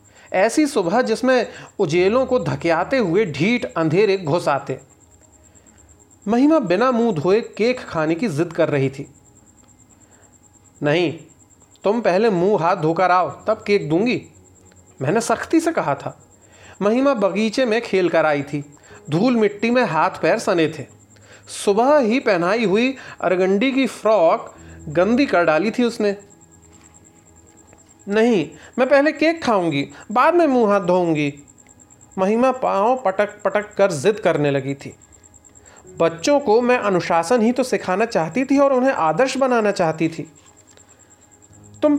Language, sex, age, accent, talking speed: Hindi, male, 40-59, native, 135 wpm